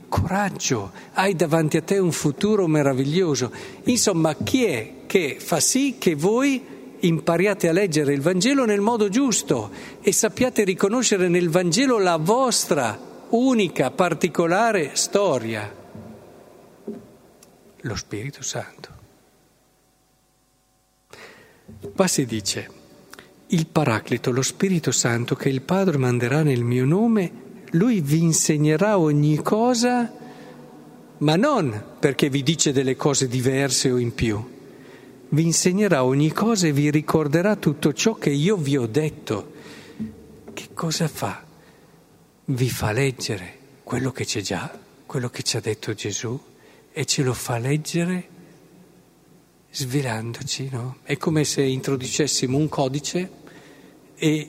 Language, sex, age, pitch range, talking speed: Italian, male, 50-69, 130-185 Hz, 125 wpm